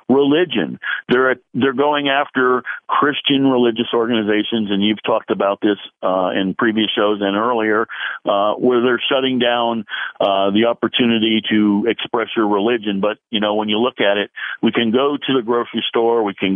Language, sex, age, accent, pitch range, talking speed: English, male, 50-69, American, 100-120 Hz, 180 wpm